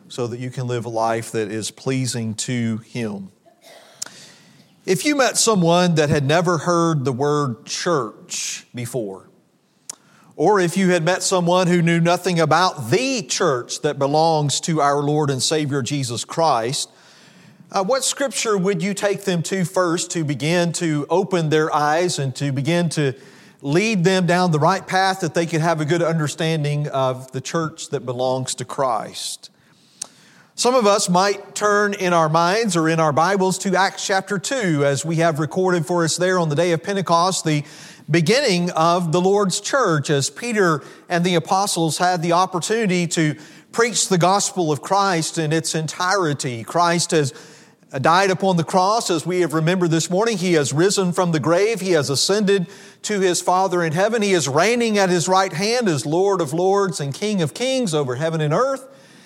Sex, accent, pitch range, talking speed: male, American, 150-190 Hz, 180 wpm